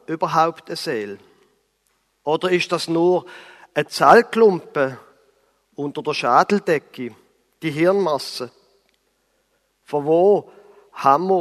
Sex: male